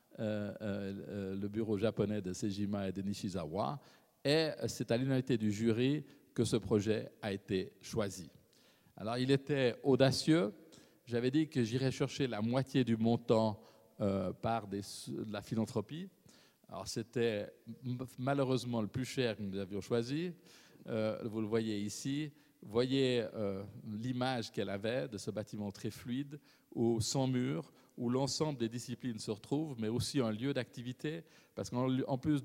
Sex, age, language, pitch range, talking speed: male, 50-69, French, 110-135 Hz, 155 wpm